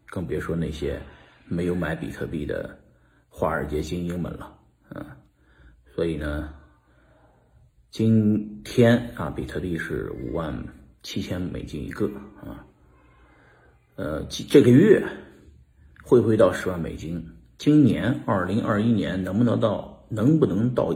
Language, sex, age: Chinese, male, 50-69